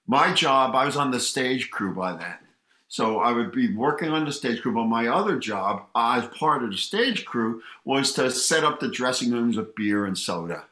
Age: 50-69